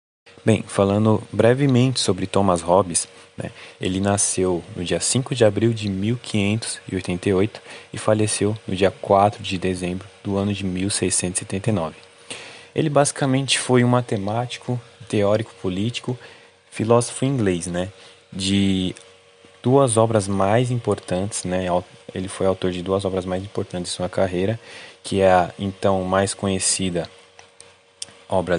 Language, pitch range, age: Portuguese, 95-110 Hz, 20-39